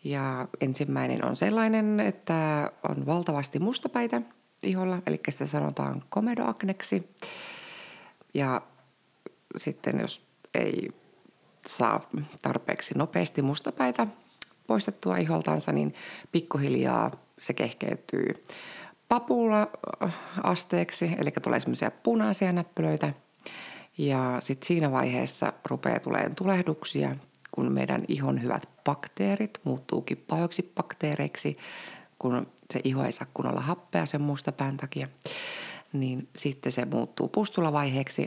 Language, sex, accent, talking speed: Finnish, female, native, 95 wpm